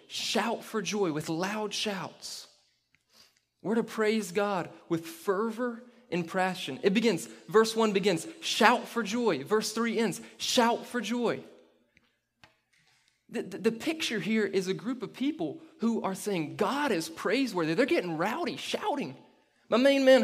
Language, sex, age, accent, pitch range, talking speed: English, male, 20-39, American, 155-230 Hz, 150 wpm